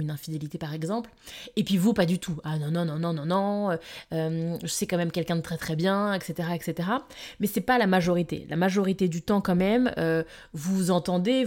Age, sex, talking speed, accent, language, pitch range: 20-39, female, 225 wpm, French, French, 165-205 Hz